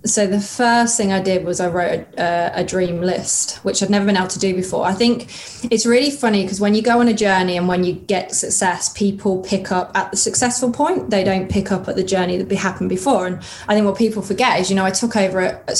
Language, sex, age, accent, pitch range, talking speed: English, female, 20-39, British, 185-210 Hz, 260 wpm